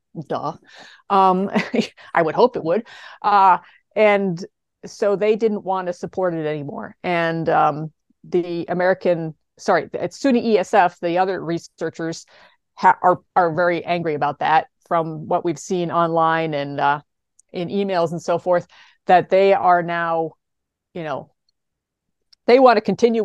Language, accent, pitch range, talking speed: English, American, 160-190 Hz, 145 wpm